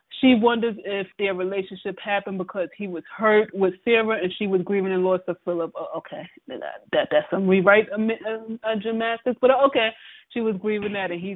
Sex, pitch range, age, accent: female, 185-220 Hz, 20-39, American